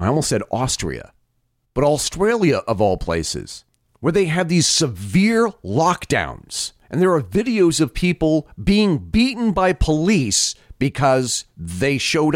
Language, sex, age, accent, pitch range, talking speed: English, male, 40-59, American, 120-180 Hz, 135 wpm